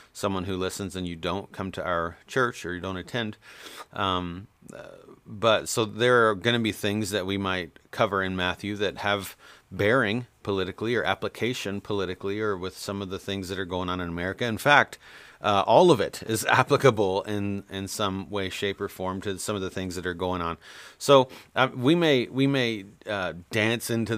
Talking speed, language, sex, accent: 200 wpm, English, male, American